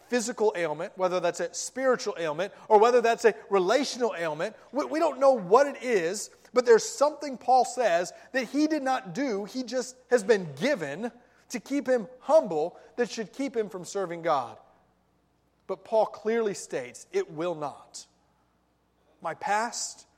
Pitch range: 155-240 Hz